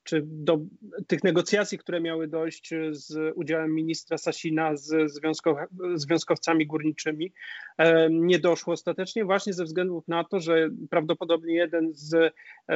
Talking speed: 120 wpm